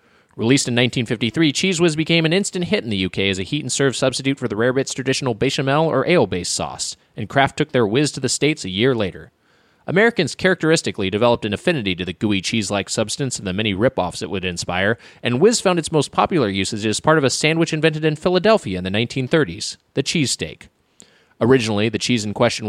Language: English